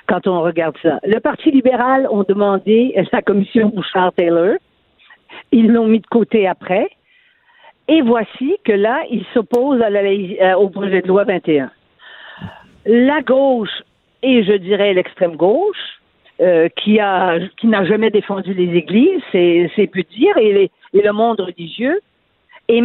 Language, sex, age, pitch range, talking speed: French, female, 60-79, 190-255 Hz, 160 wpm